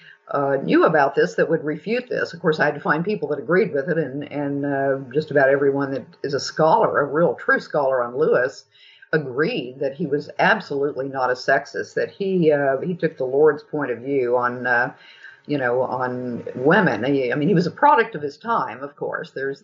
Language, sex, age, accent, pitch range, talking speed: English, female, 50-69, American, 135-180 Hz, 215 wpm